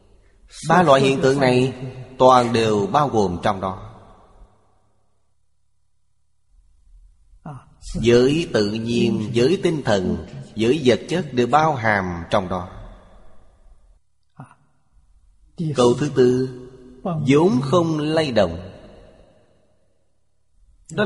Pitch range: 95-135 Hz